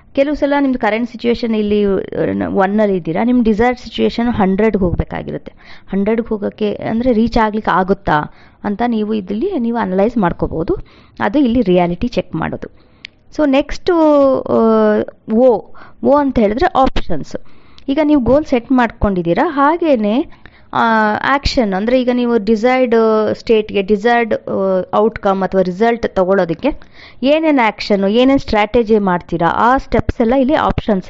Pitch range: 195-260 Hz